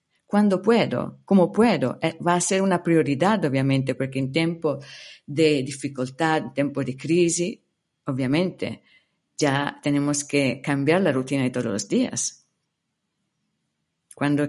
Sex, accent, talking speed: female, Italian, 130 wpm